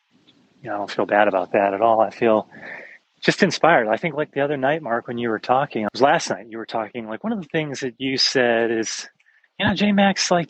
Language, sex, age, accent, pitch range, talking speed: English, male, 30-49, American, 120-175 Hz, 265 wpm